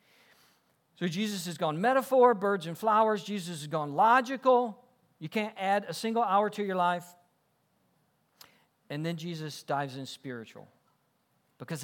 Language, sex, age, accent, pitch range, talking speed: English, male, 50-69, American, 160-215 Hz, 140 wpm